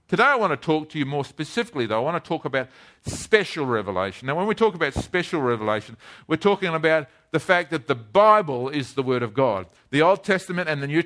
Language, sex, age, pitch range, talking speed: English, male, 50-69, 145-190 Hz, 235 wpm